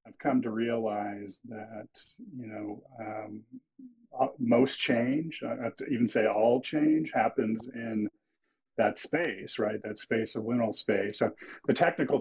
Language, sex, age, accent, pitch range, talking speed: English, male, 40-59, American, 110-125 Hz, 145 wpm